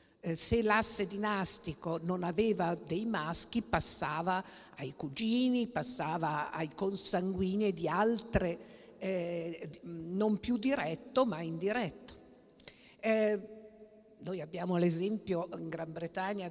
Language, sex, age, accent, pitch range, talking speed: Italian, female, 50-69, native, 155-195 Hz, 100 wpm